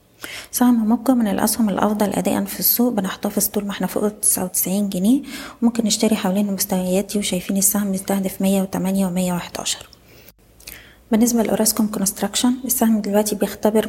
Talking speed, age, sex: 135 wpm, 20-39, female